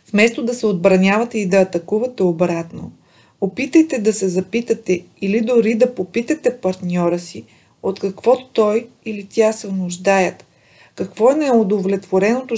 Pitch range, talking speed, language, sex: 185-230 Hz, 135 wpm, Bulgarian, female